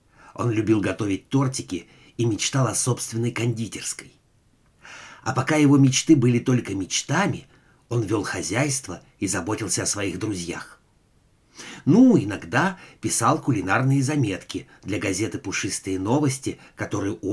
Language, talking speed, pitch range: Russian, 120 wpm, 95-135 Hz